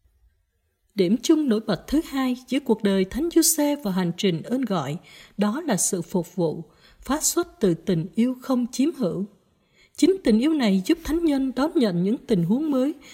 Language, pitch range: Vietnamese, 195-280 Hz